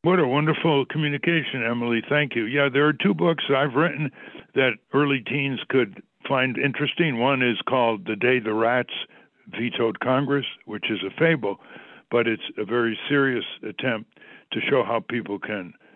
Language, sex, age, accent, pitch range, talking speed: English, male, 60-79, American, 105-135 Hz, 165 wpm